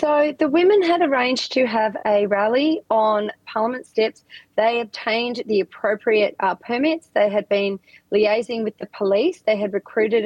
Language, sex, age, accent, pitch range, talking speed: English, female, 30-49, Australian, 195-230 Hz, 165 wpm